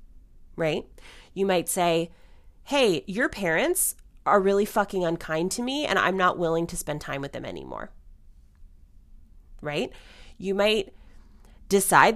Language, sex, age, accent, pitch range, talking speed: English, female, 30-49, American, 160-210 Hz, 135 wpm